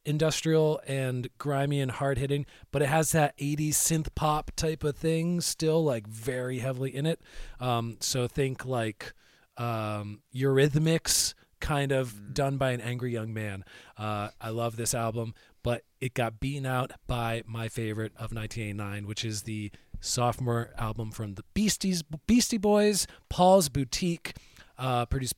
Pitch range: 115-145 Hz